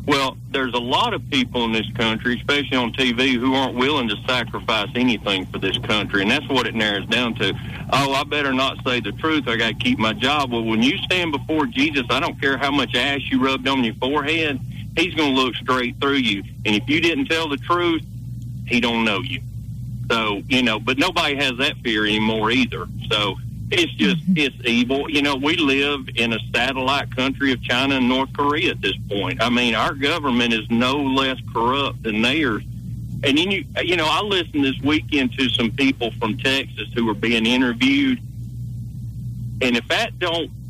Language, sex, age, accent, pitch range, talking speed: English, male, 50-69, American, 115-140 Hz, 205 wpm